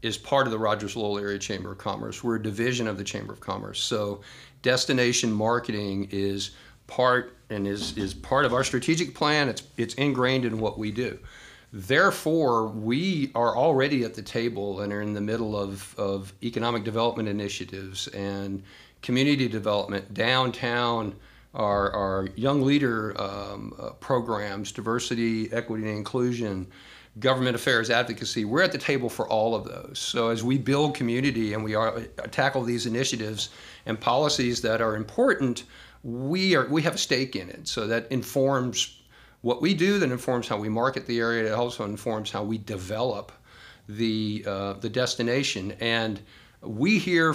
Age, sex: 50-69, male